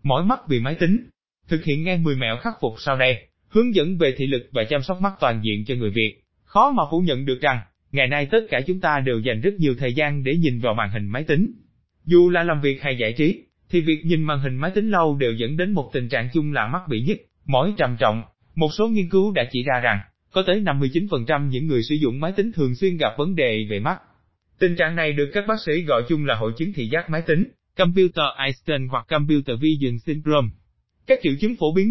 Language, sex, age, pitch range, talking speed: Vietnamese, male, 20-39, 125-180 Hz, 250 wpm